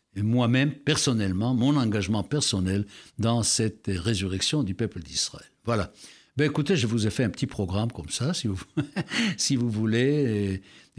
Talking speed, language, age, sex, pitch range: 155 wpm, French, 60-79, male, 110-160 Hz